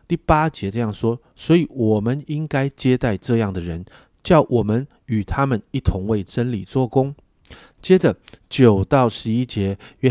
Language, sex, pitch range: Chinese, male, 105-150 Hz